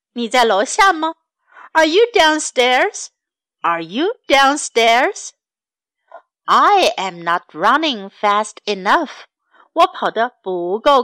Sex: female